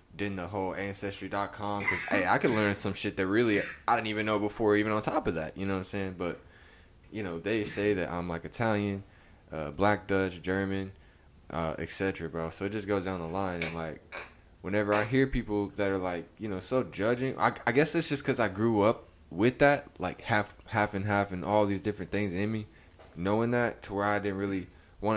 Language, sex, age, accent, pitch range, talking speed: English, male, 20-39, American, 90-105 Hz, 225 wpm